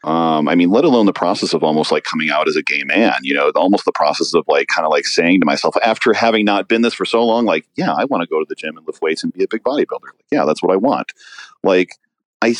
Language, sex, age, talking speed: English, male, 40-59, 290 wpm